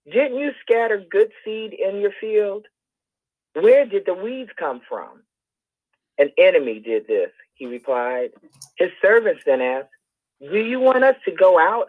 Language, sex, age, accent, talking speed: English, male, 40-59, American, 155 wpm